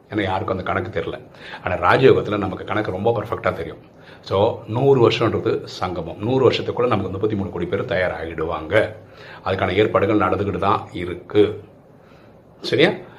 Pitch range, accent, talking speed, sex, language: 100-145 Hz, native, 135 wpm, male, Tamil